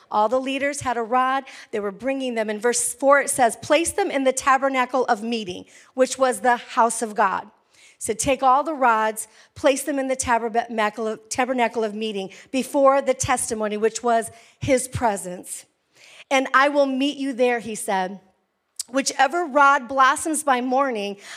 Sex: female